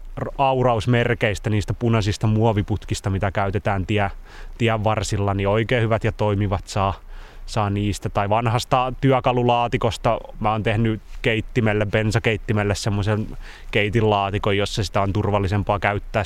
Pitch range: 100-125 Hz